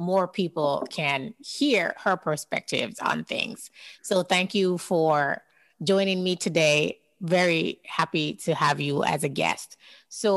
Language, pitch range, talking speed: English, 160-205 Hz, 140 wpm